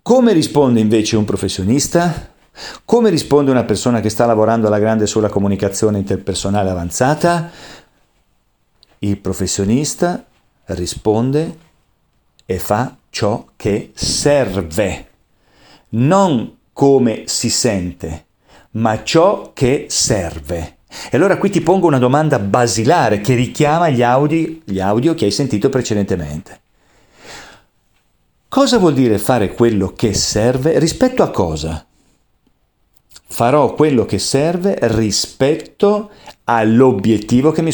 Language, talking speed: Italian, 110 wpm